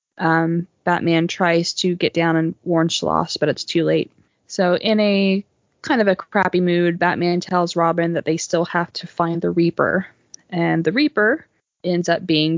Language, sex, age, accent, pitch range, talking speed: English, female, 20-39, American, 170-200 Hz, 180 wpm